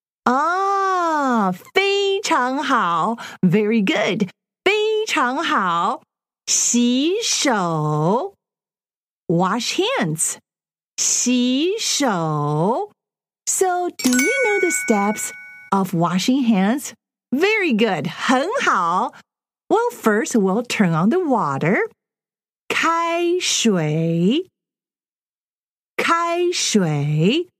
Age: 40-59